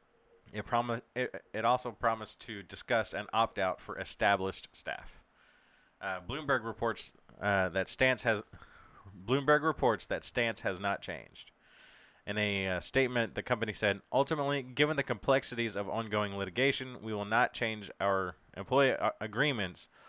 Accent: American